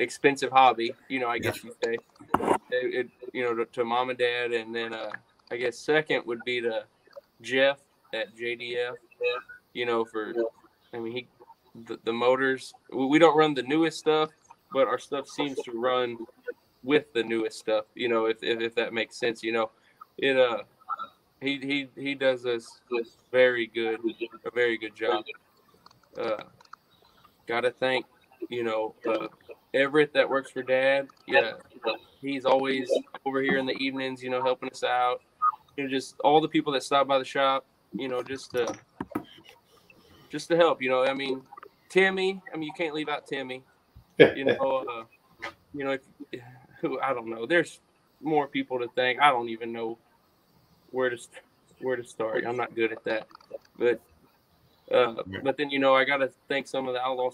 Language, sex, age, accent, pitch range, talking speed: English, male, 20-39, American, 120-145 Hz, 180 wpm